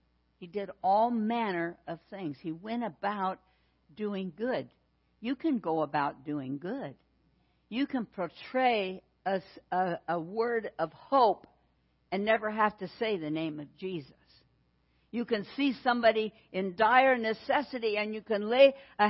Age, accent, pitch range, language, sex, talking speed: 60-79, American, 180-245 Hz, English, female, 145 wpm